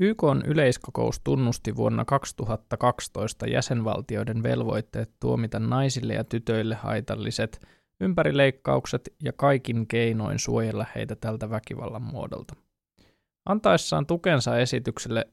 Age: 20-39